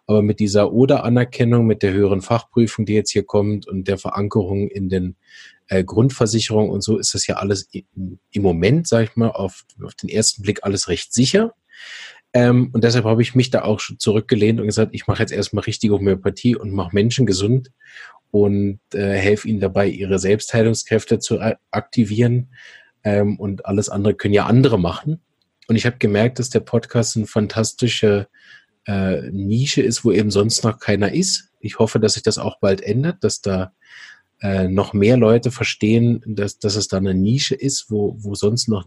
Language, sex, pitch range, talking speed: German, male, 100-120 Hz, 185 wpm